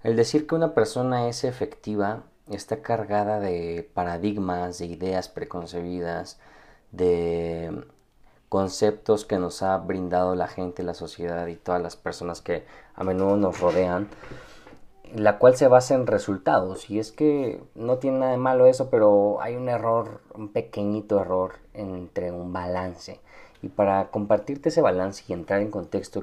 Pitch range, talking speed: 90-110 Hz, 155 wpm